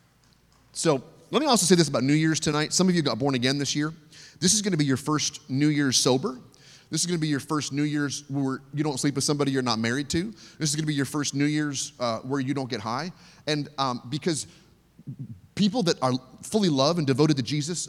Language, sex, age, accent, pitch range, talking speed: English, male, 30-49, American, 130-175 Hz, 240 wpm